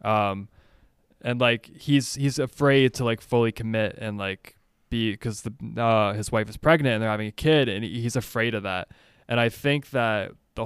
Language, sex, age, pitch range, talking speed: English, male, 20-39, 105-125 Hz, 205 wpm